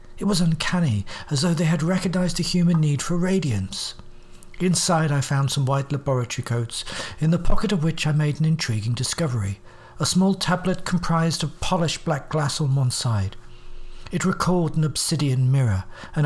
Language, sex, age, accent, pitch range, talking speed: English, male, 60-79, British, 125-185 Hz, 175 wpm